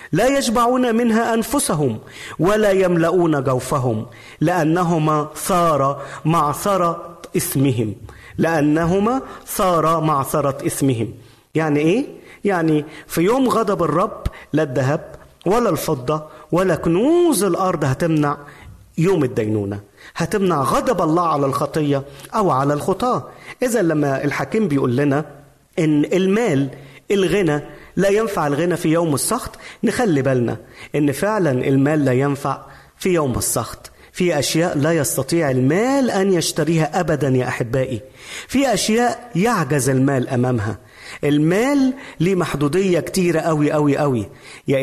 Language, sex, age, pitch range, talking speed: Arabic, male, 40-59, 135-185 Hz, 115 wpm